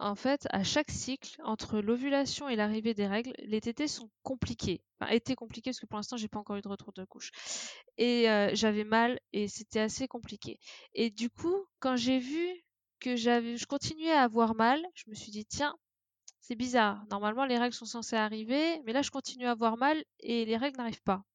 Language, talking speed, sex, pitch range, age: French, 215 wpm, female, 215-270 Hz, 20-39